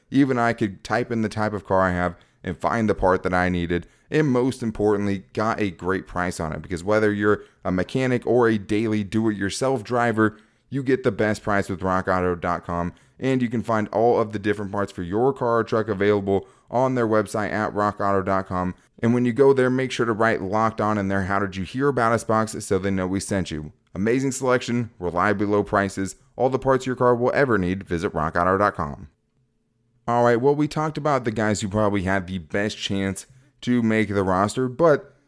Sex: male